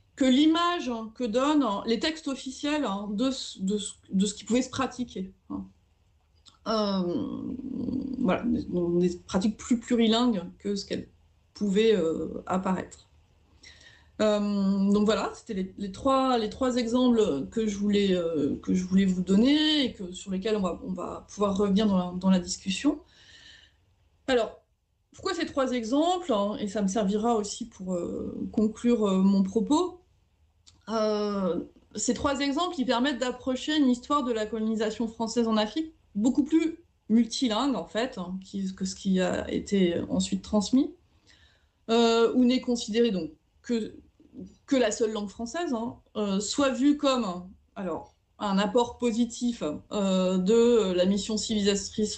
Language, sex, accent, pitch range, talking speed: French, female, French, 190-250 Hz, 140 wpm